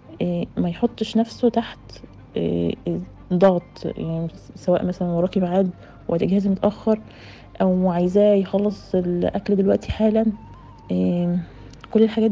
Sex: female